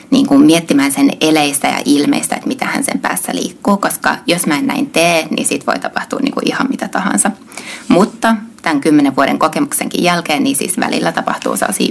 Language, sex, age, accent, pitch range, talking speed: Finnish, female, 20-39, native, 160-255 Hz, 195 wpm